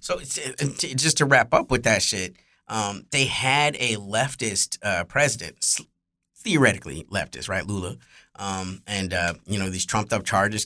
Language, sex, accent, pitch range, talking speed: English, male, American, 105-130 Hz, 160 wpm